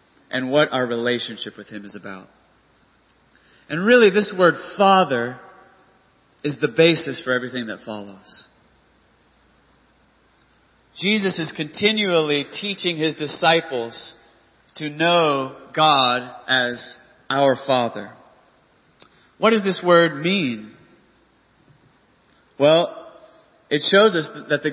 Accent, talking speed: American, 105 wpm